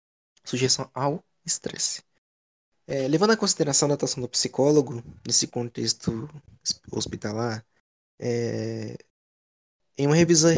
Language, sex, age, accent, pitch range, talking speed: Portuguese, male, 20-39, Brazilian, 115-150 Hz, 115 wpm